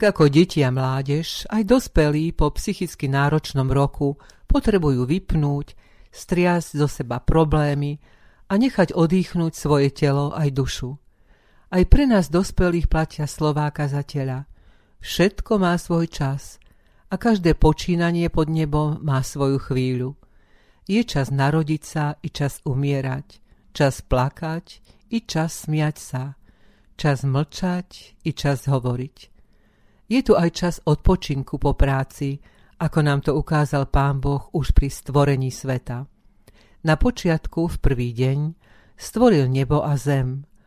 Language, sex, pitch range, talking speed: Slovak, female, 135-165 Hz, 125 wpm